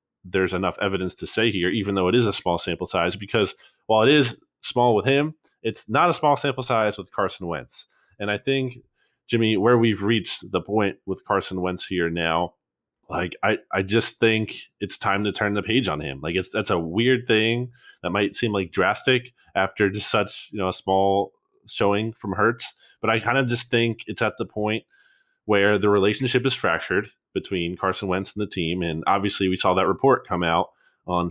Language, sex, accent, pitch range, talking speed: English, male, American, 95-120 Hz, 205 wpm